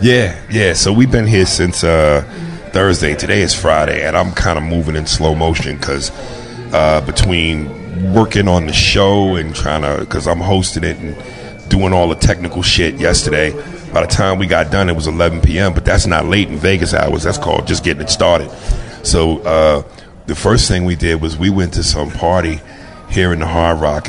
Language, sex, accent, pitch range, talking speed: English, male, American, 80-105 Hz, 200 wpm